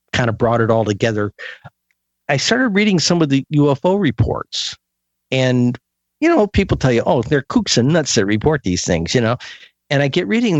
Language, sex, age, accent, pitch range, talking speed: English, male, 50-69, American, 110-160 Hz, 200 wpm